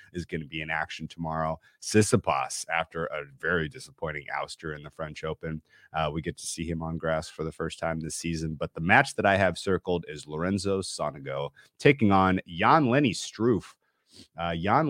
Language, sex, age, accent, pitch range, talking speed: English, male, 30-49, American, 80-100 Hz, 195 wpm